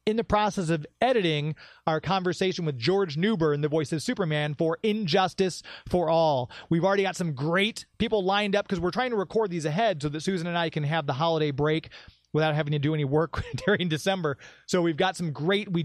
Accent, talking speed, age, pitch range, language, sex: American, 215 wpm, 30-49, 150-190 Hz, English, male